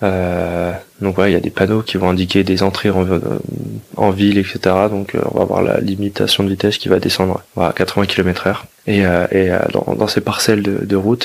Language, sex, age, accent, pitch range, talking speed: French, male, 20-39, French, 95-105 Hz, 240 wpm